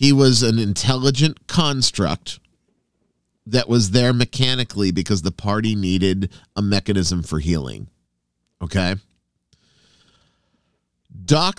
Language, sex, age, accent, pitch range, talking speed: English, male, 40-59, American, 95-135 Hz, 100 wpm